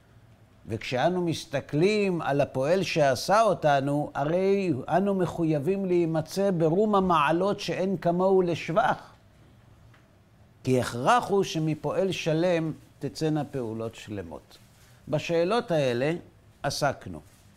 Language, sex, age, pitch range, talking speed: Hebrew, male, 50-69, 120-175 Hz, 90 wpm